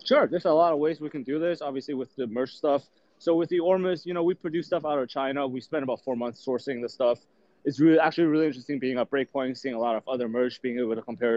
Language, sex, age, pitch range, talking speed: English, male, 20-39, 115-145 Hz, 280 wpm